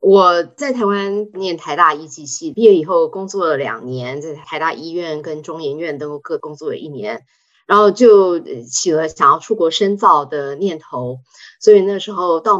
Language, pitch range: Chinese, 160-255 Hz